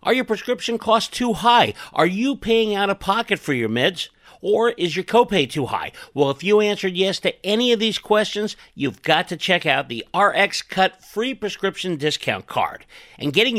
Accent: American